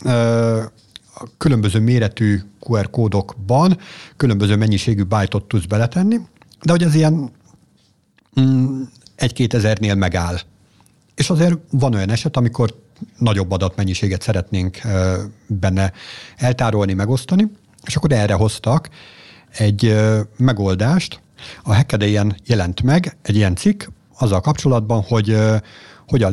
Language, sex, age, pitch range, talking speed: Hungarian, male, 50-69, 100-130 Hz, 105 wpm